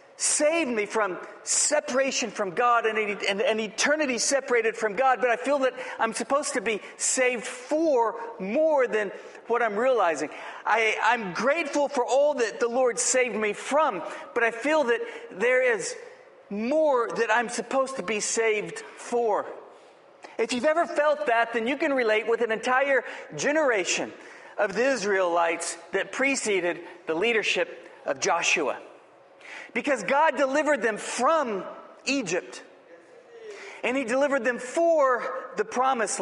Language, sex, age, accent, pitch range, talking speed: English, male, 40-59, American, 225-305 Hz, 145 wpm